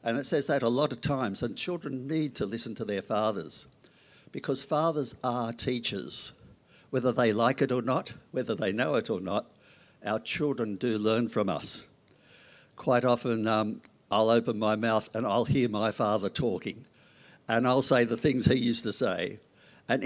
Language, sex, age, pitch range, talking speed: English, male, 60-79, 115-140 Hz, 185 wpm